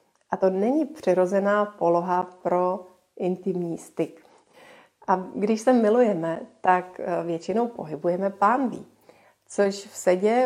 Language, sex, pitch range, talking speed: Slovak, female, 180-220 Hz, 110 wpm